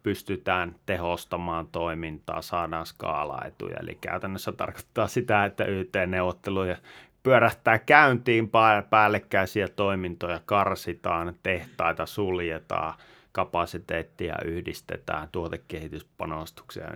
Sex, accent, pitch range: male, native, 85-105 Hz